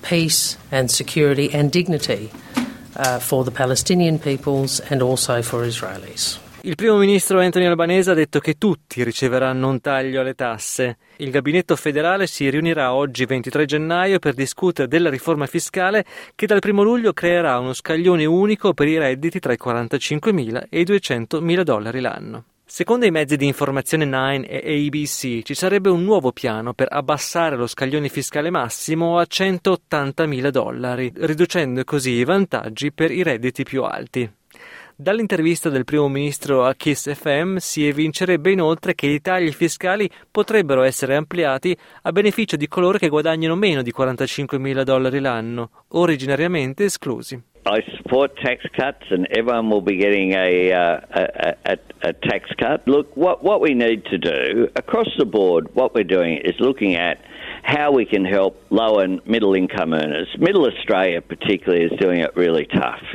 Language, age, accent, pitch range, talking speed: Italian, 30-49, native, 130-170 Hz, 150 wpm